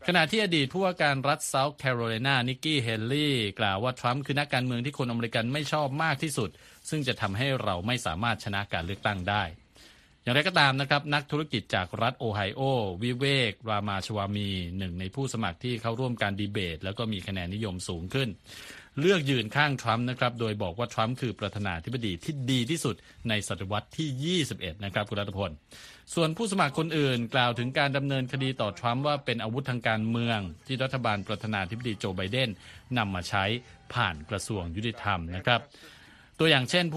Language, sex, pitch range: Thai, male, 105-135 Hz